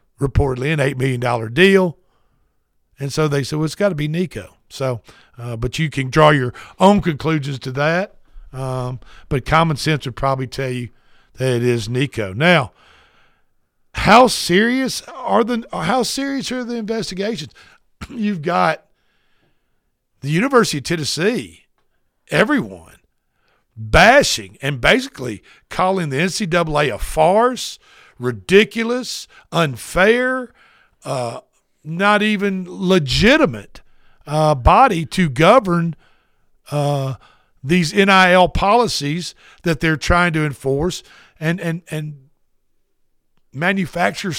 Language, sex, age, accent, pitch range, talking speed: English, male, 60-79, American, 140-195 Hz, 120 wpm